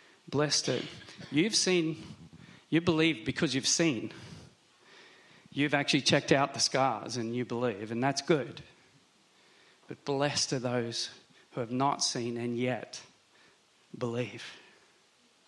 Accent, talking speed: Australian, 125 wpm